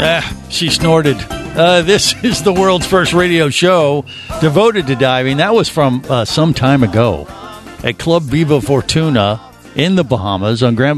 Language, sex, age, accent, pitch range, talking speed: English, male, 50-69, American, 105-145 Hz, 165 wpm